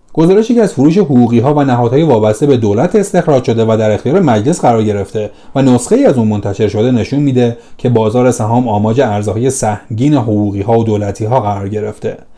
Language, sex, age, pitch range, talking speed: Persian, male, 30-49, 105-150 Hz, 185 wpm